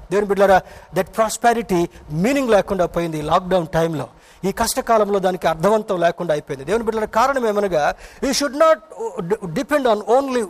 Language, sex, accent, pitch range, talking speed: Telugu, male, native, 170-225 Hz, 145 wpm